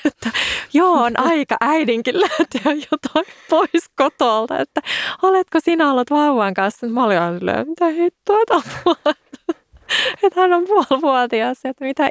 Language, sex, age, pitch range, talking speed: Finnish, female, 20-39, 190-275 Hz, 130 wpm